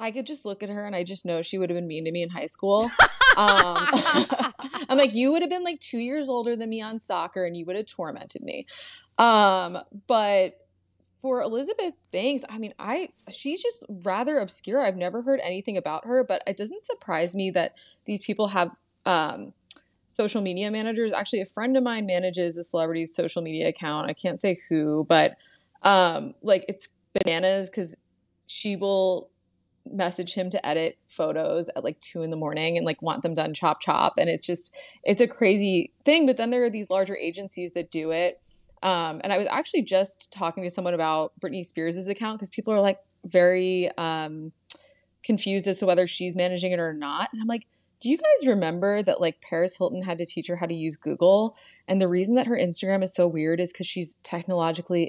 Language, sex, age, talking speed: English, female, 20-39, 205 wpm